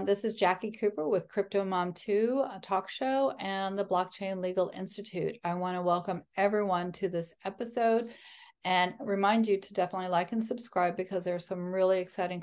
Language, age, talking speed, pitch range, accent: English, 40-59, 185 wpm, 175-205 Hz, American